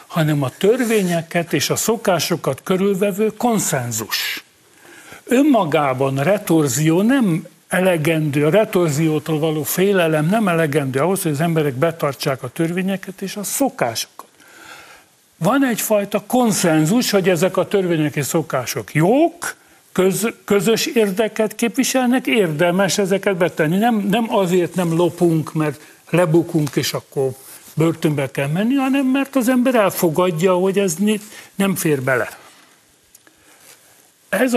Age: 60-79